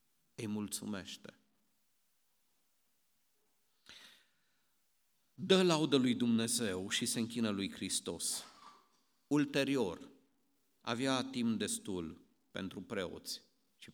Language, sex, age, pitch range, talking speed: Romanian, male, 50-69, 120-165 Hz, 80 wpm